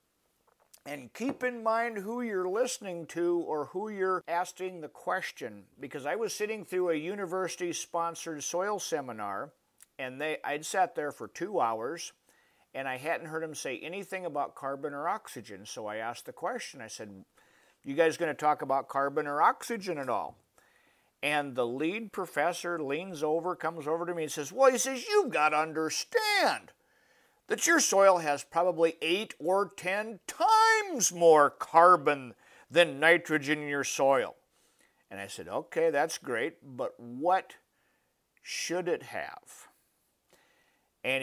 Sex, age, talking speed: male, 50-69, 155 wpm